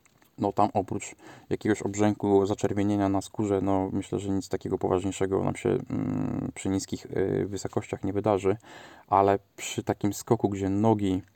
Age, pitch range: 20-39, 95-110 Hz